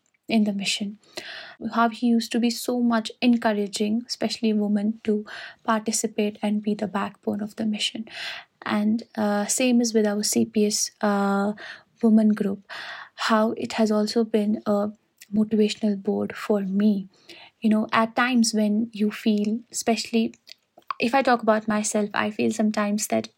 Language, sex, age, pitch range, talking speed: Urdu, female, 20-39, 210-225 Hz, 150 wpm